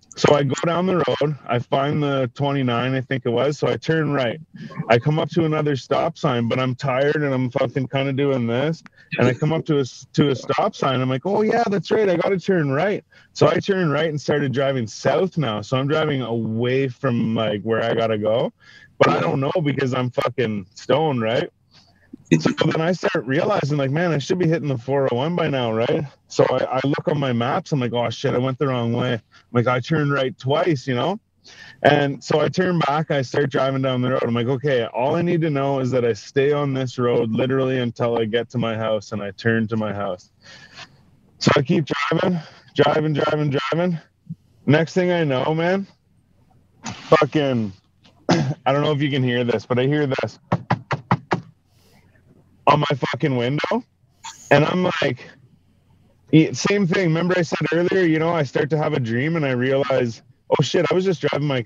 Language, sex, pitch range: English, male, 125-160 Hz